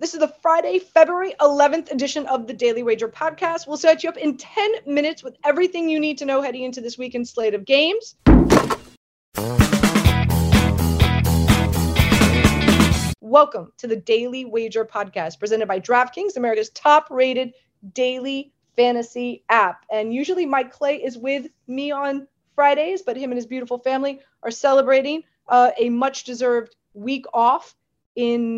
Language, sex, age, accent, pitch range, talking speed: English, female, 30-49, American, 230-285 Hz, 150 wpm